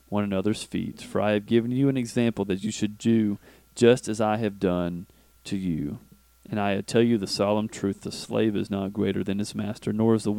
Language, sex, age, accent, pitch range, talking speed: English, male, 30-49, American, 95-120 Hz, 225 wpm